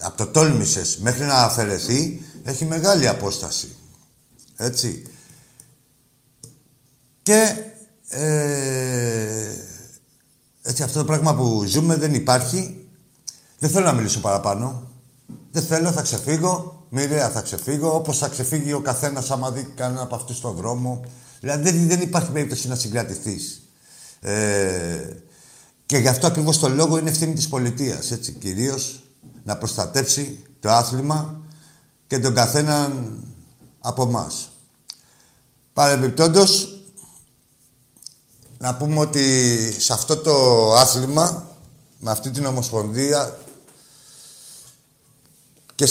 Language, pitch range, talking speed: Greek, 120-155 Hz, 110 wpm